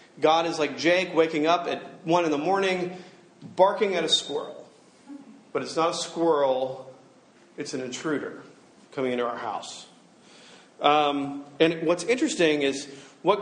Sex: male